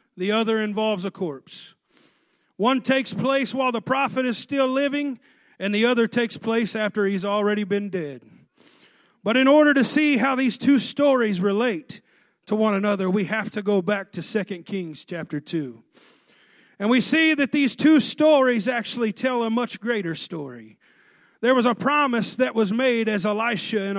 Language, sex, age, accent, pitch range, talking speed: English, male, 40-59, American, 200-260 Hz, 175 wpm